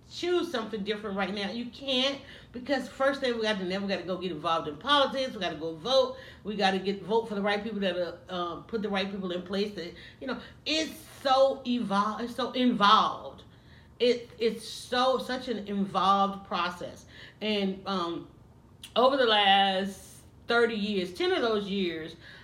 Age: 40-59